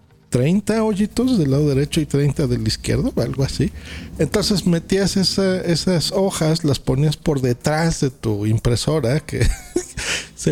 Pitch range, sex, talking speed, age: 125-175 Hz, male, 145 wpm, 40-59